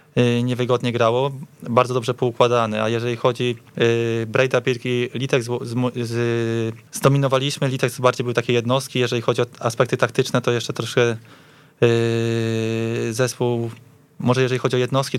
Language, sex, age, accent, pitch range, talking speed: Polish, male, 20-39, native, 120-130 Hz, 140 wpm